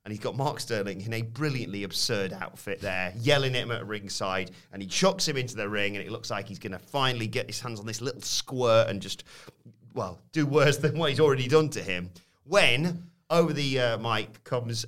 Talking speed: 225 wpm